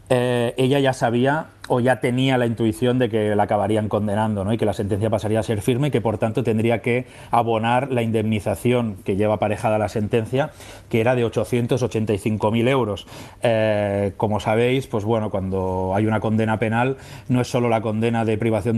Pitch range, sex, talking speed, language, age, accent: 110-125 Hz, male, 190 wpm, Spanish, 30-49, Spanish